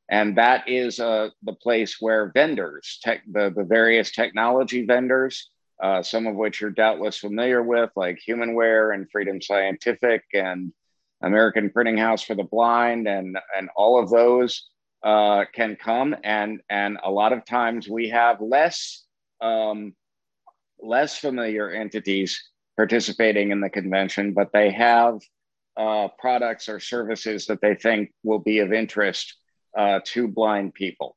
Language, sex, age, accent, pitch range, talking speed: English, male, 50-69, American, 100-115 Hz, 145 wpm